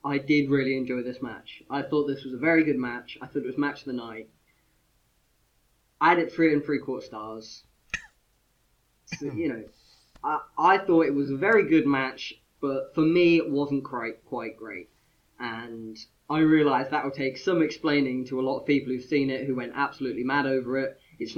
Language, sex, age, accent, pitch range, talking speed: English, male, 10-29, British, 125-150 Hz, 200 wpm